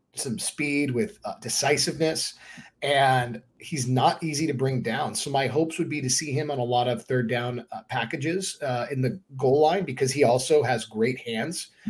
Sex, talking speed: male, 195 wpm